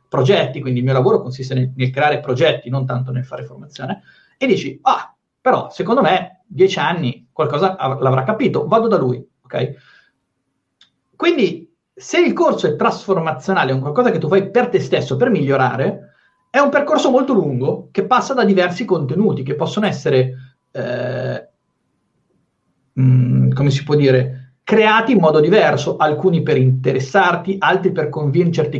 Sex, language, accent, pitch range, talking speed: male, Italian, native, 135-205 Hz, 165 wpm